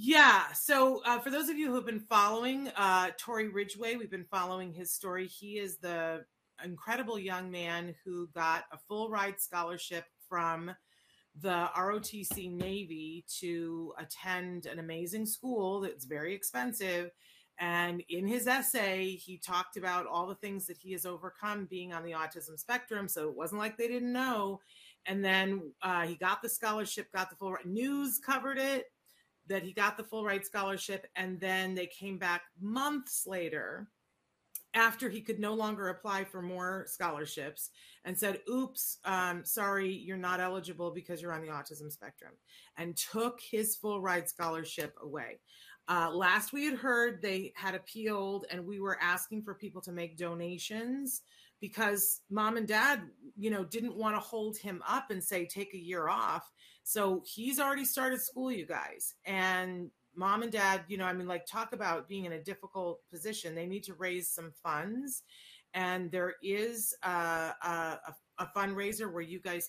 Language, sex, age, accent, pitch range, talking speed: English, female, 30-49, American, 175-215 Hz, 175 wpm